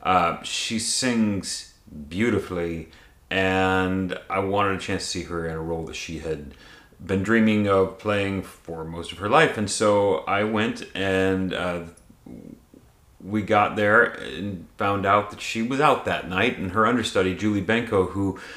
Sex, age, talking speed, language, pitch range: male, 30-49, 165 wpm, English, 95-115 Hz